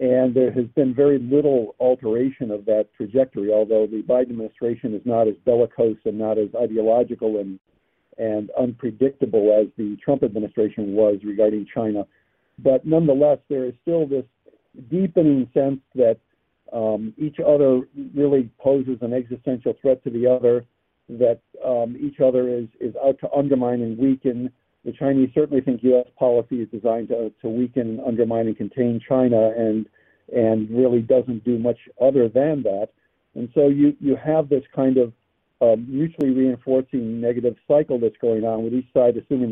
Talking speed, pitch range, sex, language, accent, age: 160 wpm, 115-135 Hz, male, English, American, 50-69